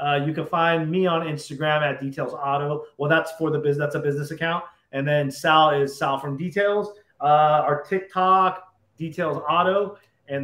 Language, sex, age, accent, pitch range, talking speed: English, male, 30-49, American, 145-185 Hz, 185 wpm